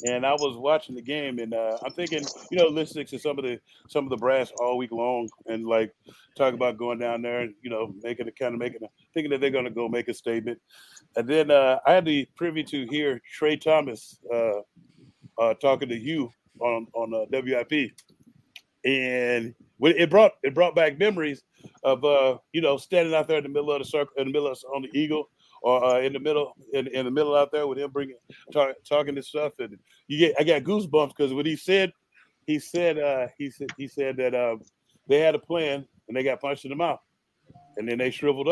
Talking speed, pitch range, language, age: 230 wpm, 125-150 Hz, English, 30-49